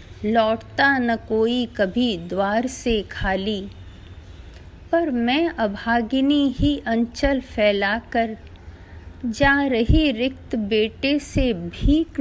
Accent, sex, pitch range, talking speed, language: native, female, 200-250 Hz, 95 wpm, Hindi